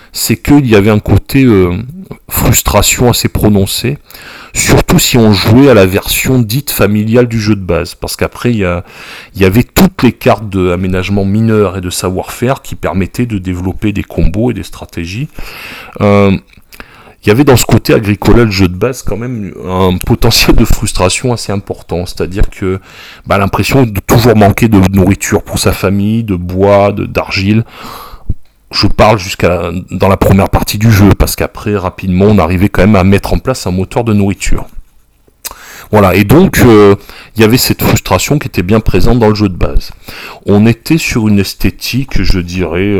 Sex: male